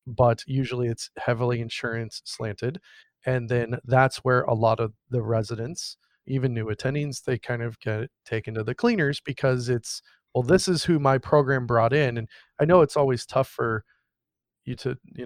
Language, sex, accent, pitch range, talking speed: English, male, American, 115-140 Hz, 180 wpm